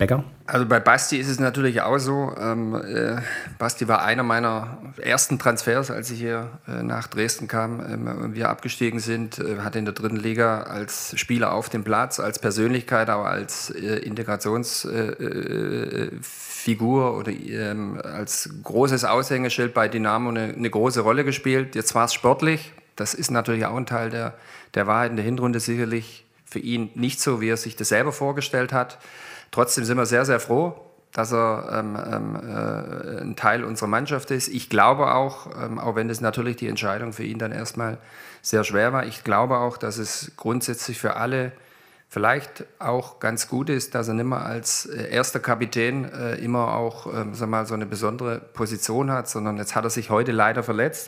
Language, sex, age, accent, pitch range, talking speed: German, male, 40-59, German, 110-125 Hz, 185 wpm